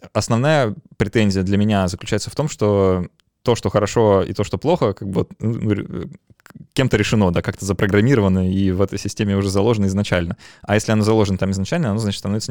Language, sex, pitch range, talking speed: Russian, male, 95-110 Hz, 180 wpm